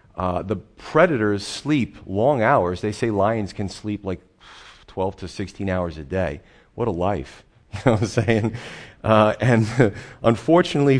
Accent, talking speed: American, 160 wpm